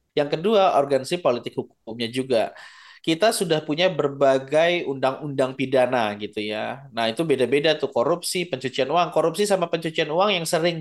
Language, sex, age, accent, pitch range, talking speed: Indonesian, male, 20-39, native, 125-165 Hz, 150 wpm